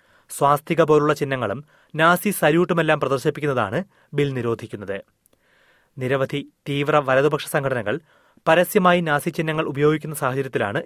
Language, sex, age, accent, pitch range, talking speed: Malayalam, male, 30-49, native, 135-170 Hz, 90 wpm